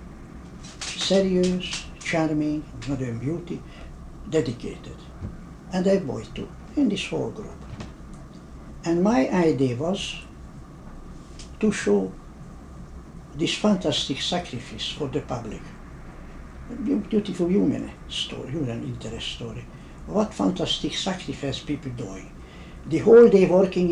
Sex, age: male, 60-79